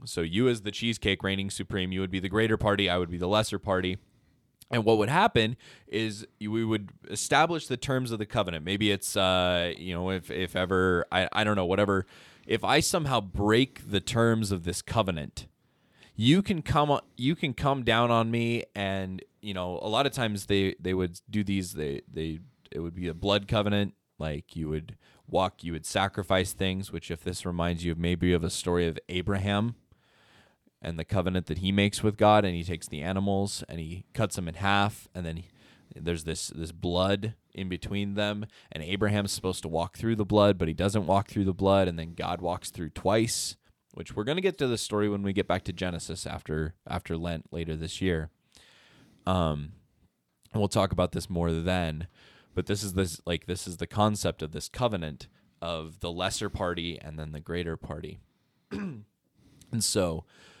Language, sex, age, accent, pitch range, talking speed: English, male, 20-39, American, 85-105 Hz, 205 wpm